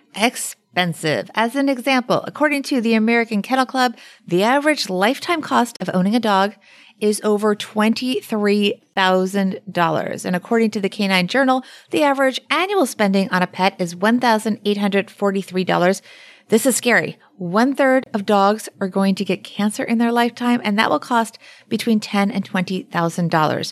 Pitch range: 185-235 Hz